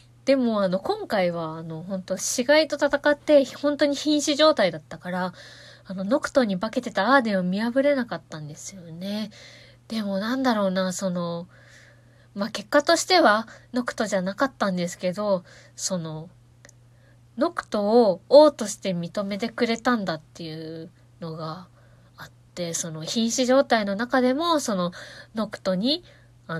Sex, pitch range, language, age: female, 170-260 Hz, Japanese, 20-39